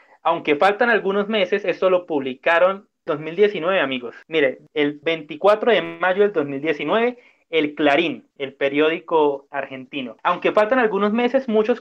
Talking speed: 130 wpm